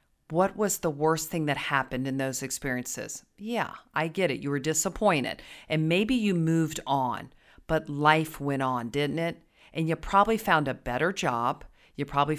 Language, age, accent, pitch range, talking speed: English, 40-59, American, 140-185 Hz, 180 wpm